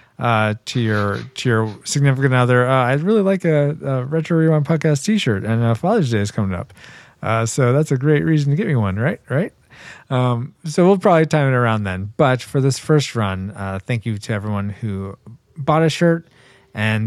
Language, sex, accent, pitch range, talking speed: English, male, American, 110-155 Hz, 210 wpm